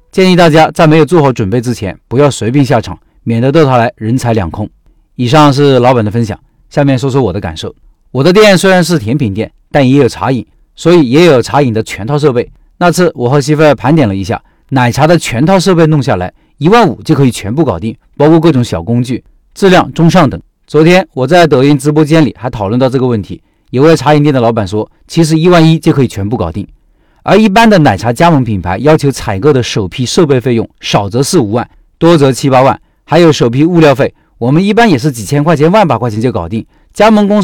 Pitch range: 115-160 Hz